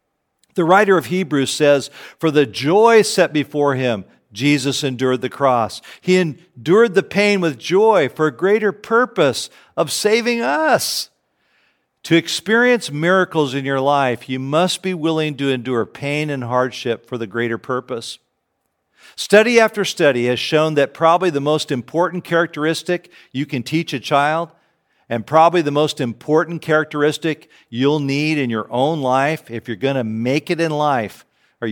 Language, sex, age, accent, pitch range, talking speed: English, male, 50-69, American, 135-180 Hz, 160 wpm